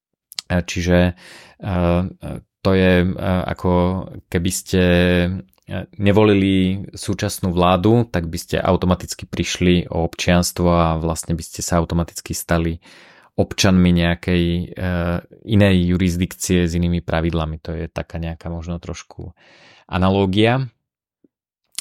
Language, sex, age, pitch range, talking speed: Slovak, male, 30-49, 85-100 Hz, 100 wpm